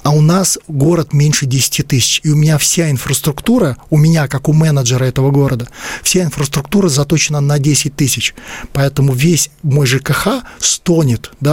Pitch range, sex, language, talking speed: 135-155 Hz, male, Russian, 155 wpm